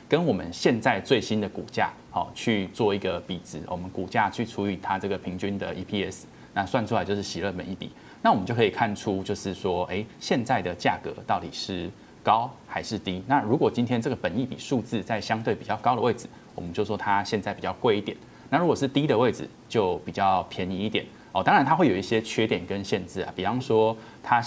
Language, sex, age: Chinese, male, 20-39